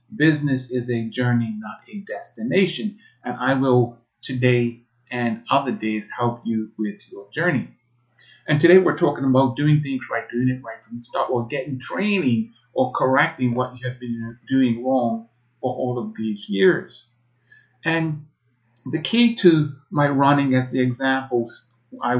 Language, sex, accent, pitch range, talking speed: English, male, American, 120-140 Hz, 160 wpm